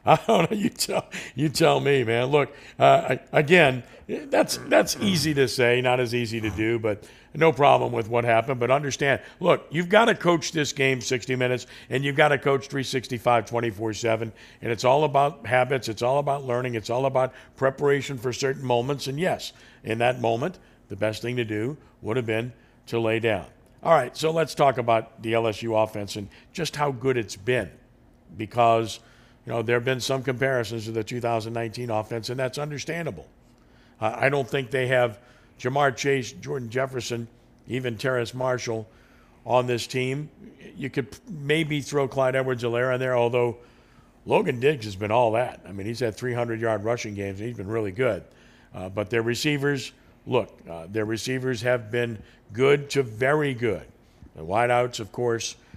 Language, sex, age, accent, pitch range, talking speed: English, male, 50-69, American, 115-135 Hz, 180 wpm